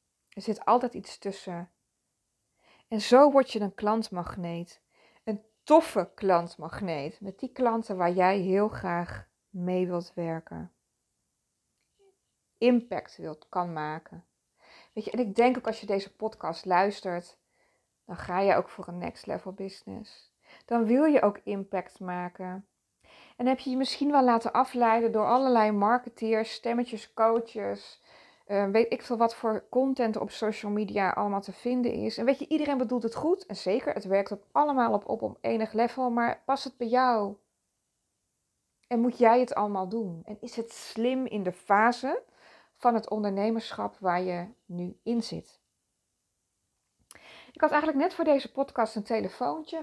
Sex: female